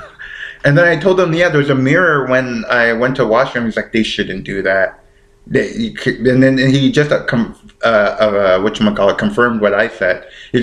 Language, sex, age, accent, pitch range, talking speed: English, male, 30-49, American, 100-130 Hz, 215 wpm